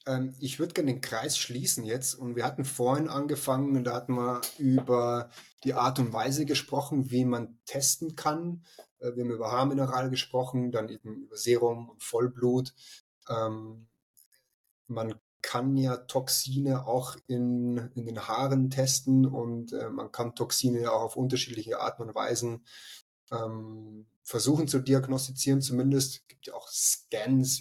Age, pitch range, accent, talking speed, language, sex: 20-39, 120-135 Hz, German, 145 wpm, German, male